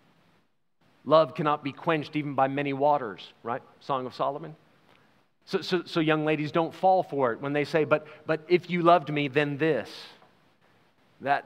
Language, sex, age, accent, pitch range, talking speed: English, male, 40-59, American, 140-180 Hz, 175 wpm